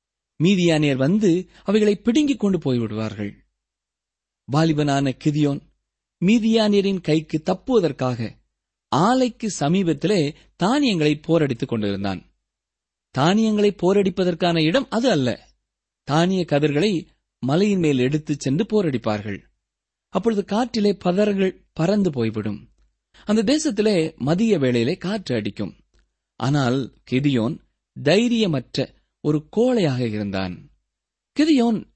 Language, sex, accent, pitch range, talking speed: Tamil, male, native, 135-210 Hz, 85 wpm